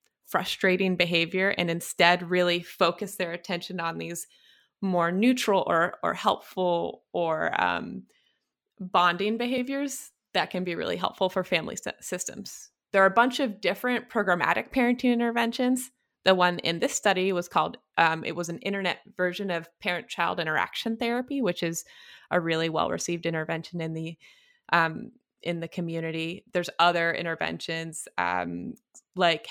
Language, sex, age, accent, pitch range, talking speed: English, female, 20-39, American, 175-225 Hz, 140 wpm